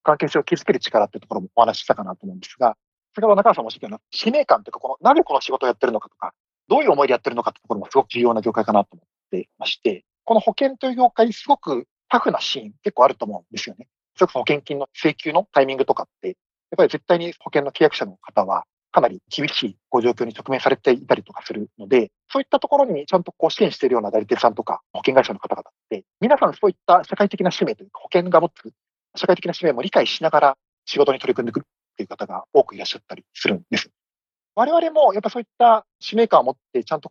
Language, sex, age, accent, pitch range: Japanese, male, 40-59, native, 140-225 Hz